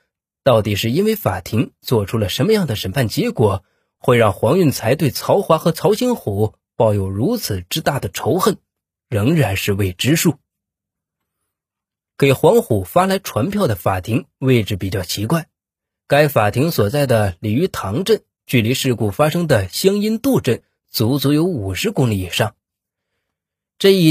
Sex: male